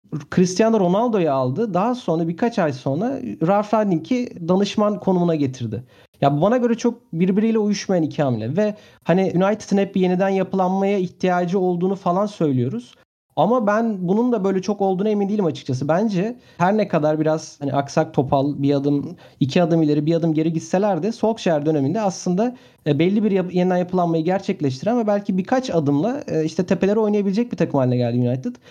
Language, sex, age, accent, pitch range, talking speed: Turkish, male, 40-59, native, 155-205 Hz, 165 wpm